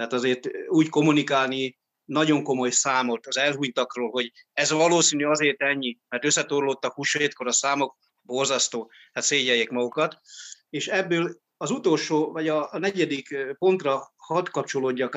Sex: male